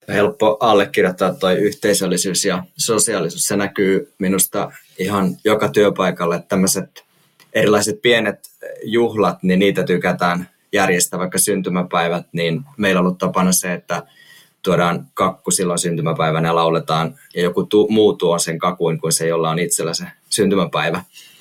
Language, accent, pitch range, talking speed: Finnish, native, 90-105 Hz, 135 wpm